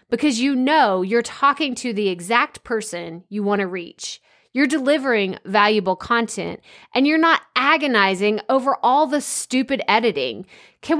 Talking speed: 145 wpm